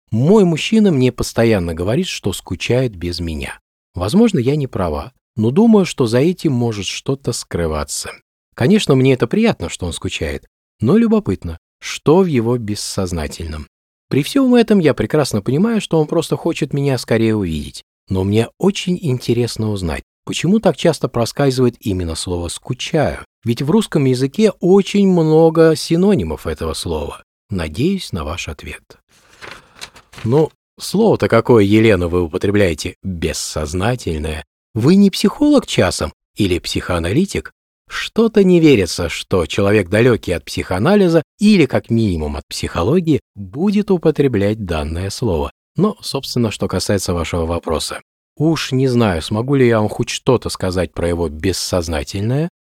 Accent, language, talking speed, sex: native, Russian, 140 wpm, male